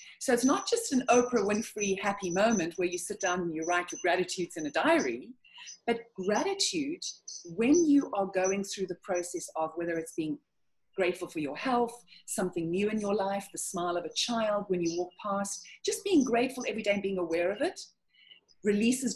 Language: English